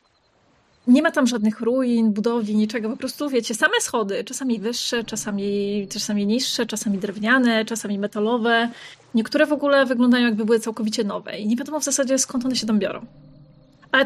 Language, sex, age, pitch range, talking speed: Polish, female, 20-39, 225-280 Hz, 170 wpm